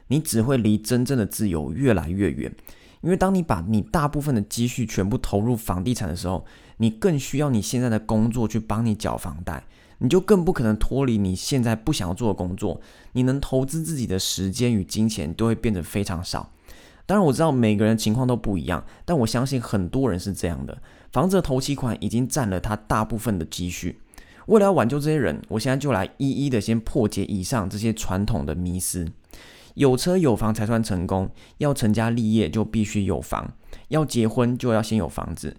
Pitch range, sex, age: 100-130 Hz, male, 20-39